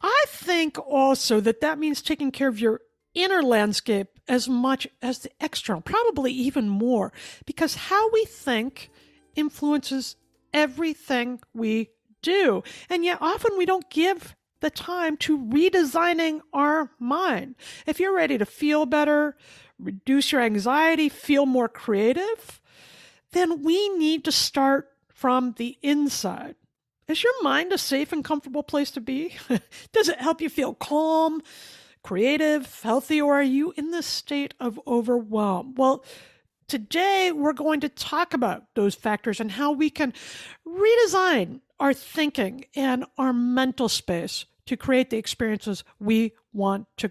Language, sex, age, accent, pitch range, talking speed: English, female, 50-69, American, 255-325 Hz, 145 wpm